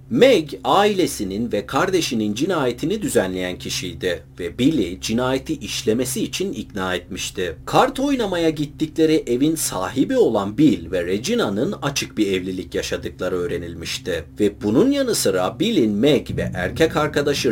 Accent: native